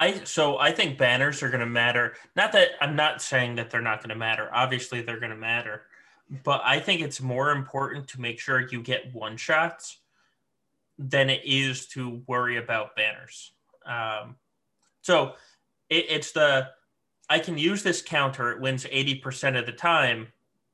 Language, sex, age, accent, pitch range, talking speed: English, male, 20-39, American, 120-150 Hz, 175 wpm